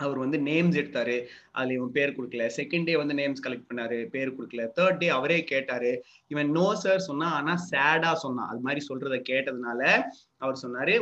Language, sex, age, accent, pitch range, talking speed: Tamil, male, 30-49, native, 130-165 Hz, 180 wpm